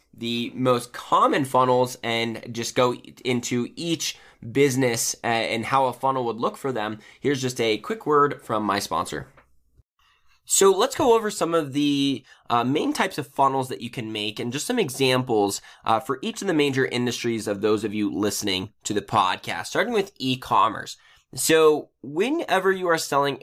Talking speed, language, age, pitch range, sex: 175 wpm, English, 20-39, 115-155 Hz, male